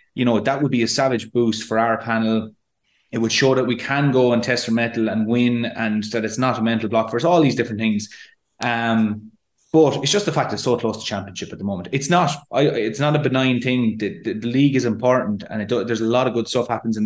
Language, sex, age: English, male, 20-39